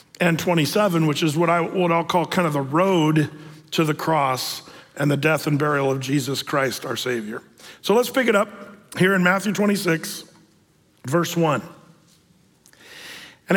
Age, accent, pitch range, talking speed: 50-69, American, 155-195 Hz, 165 wpm